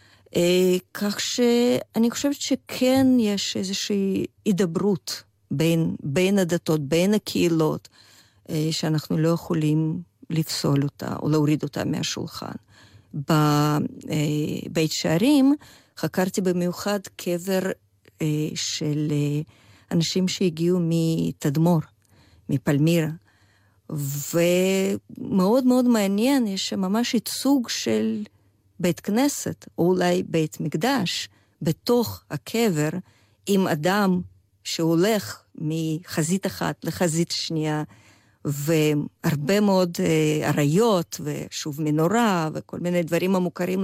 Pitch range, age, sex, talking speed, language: 150-205 Hz, 50-69, female, 85 wpm, Hebrew